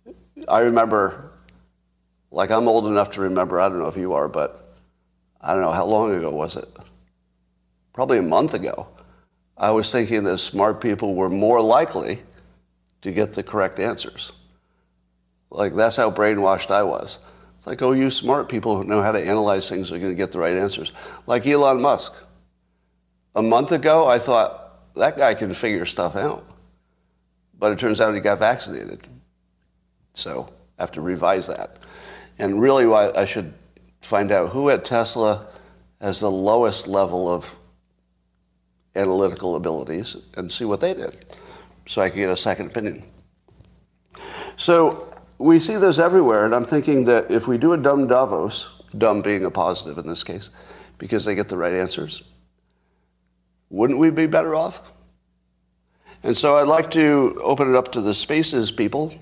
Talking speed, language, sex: 170 wpm, English, male